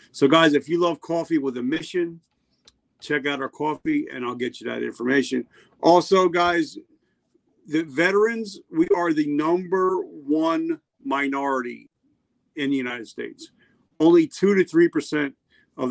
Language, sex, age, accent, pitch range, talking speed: English, male, 50-69, American, 140-210 Hz, 145 wpm